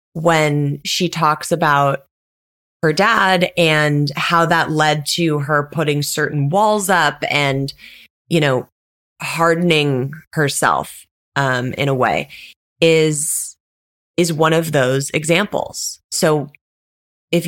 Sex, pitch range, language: female, 135-165 Hz, English